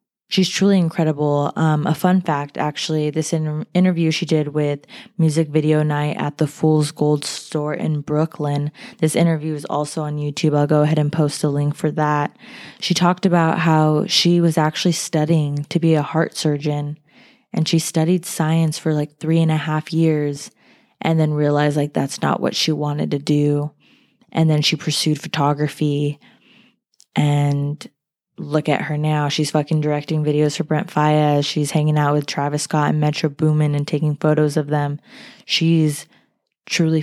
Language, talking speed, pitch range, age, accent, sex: English, 175 wpm, 150-165 Hz, 20-39, American, female